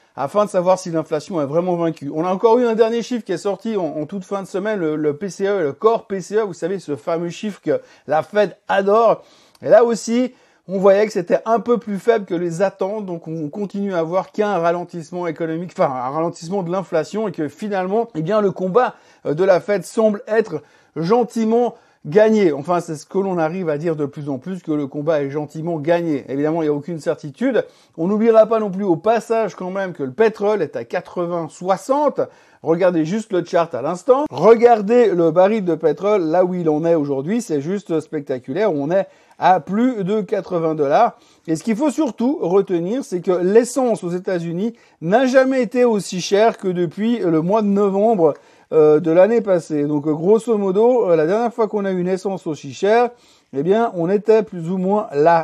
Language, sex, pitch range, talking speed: French, male, 165-220 Hz, 210 wpm